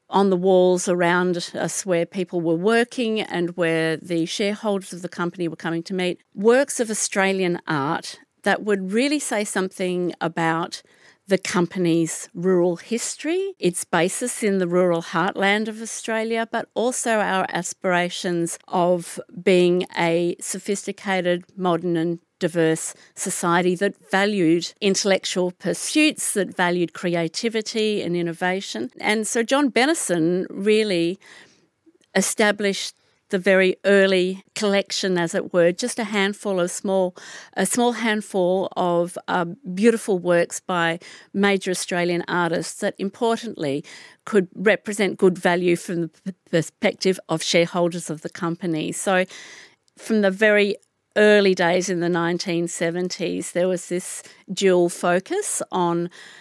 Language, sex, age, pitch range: English, female, 50-69, 175-205 Hz